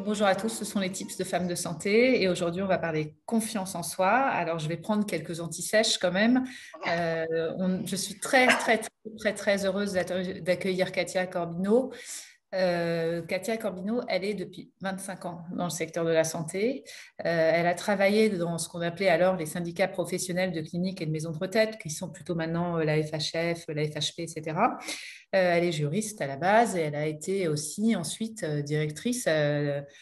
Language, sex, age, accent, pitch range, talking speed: French, female, 30-49, French, 160-210 Hz, 195 wpm